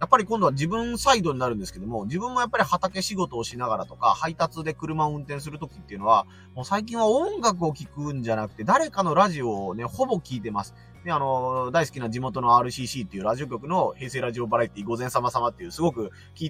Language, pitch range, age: Japanese, 115-175 Hz, 20-39